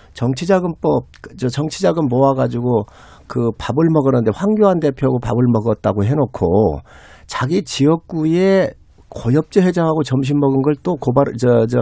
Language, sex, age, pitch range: Korean, male, 50-69, 125-205 Hz